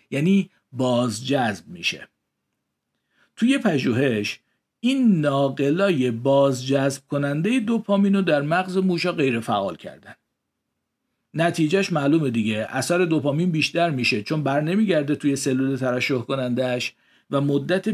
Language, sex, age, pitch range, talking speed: Persian, male, 50-69, 120-165 Hz, 110 wpm